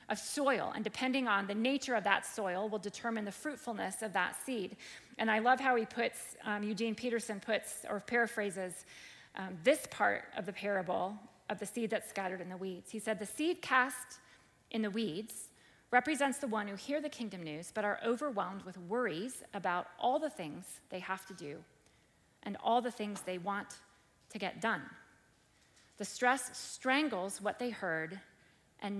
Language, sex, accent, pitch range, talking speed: English, female, American, 200-245 Hz, 180 wpm